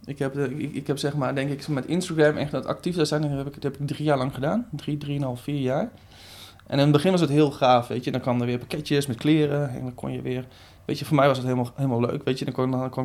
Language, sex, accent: Dutch, male, Dutch